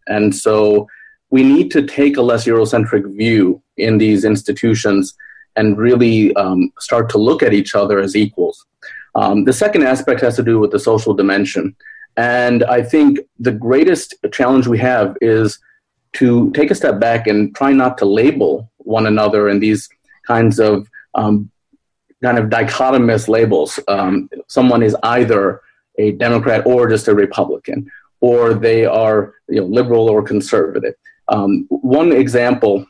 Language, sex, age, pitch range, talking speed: English, male, 30-49, 105-130 Hz, 155 wpm